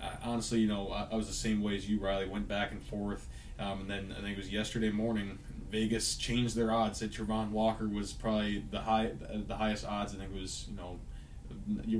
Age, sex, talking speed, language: 20-39, male, 220 wpm, English